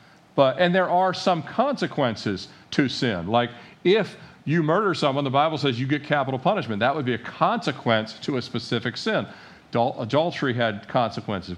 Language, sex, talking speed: English, male, 170 wpm